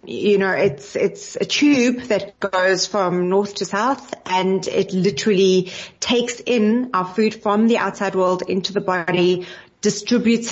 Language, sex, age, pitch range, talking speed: English, female, 30-49, 180-210 Hz, 155 wpm